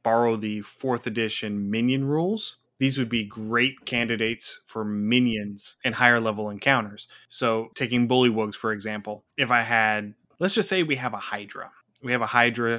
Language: English